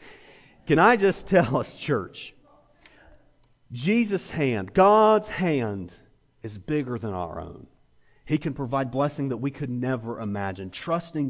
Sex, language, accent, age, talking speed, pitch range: male, English, American, 40-59, 135 wpm, 120-165 Hz